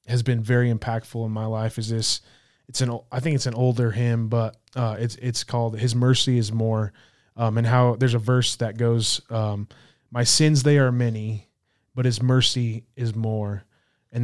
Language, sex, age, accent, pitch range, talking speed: English, male, 20-39, American, 115-135 Hz, 195 wpm